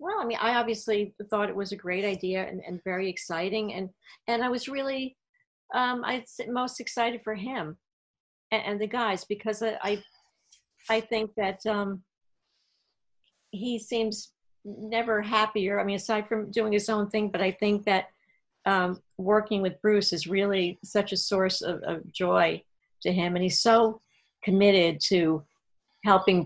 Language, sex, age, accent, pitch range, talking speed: English, female, 50-69, American, 165-210 Hz, 165 wpm